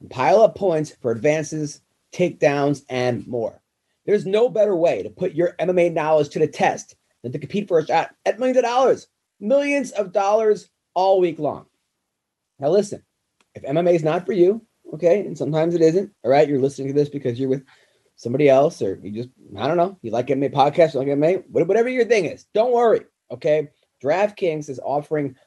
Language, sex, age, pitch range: English, male, 30-49, 140-190 Hz